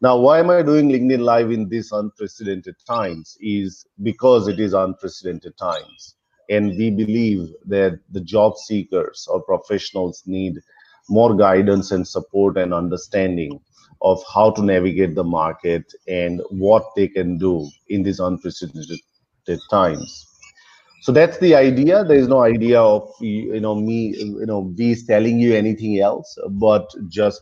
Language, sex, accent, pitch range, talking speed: English, male, Indian, 95-115 Hz, 150 wpm